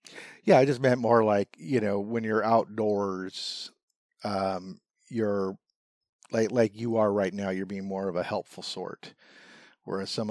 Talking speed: 165 wpm